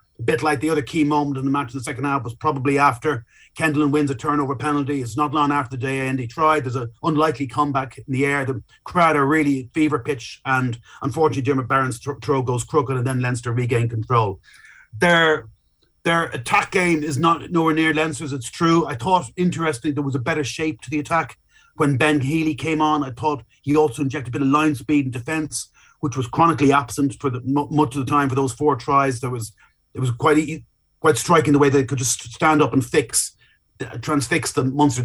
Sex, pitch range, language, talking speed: male, 125-150 Hz, English, 215 wpm